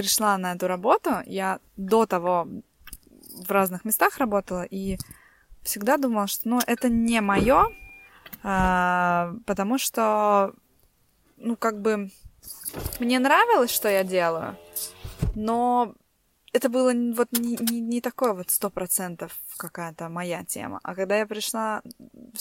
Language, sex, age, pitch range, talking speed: Russian, female, 20-39, 175-230 Hz, 130 wpm